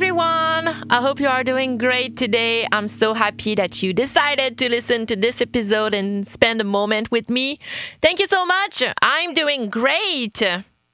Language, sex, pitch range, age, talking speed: English, female, 195-270 Hz, 30-49, 175 wpm